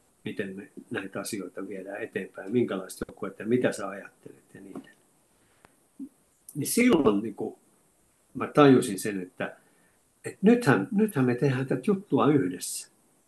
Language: Finnish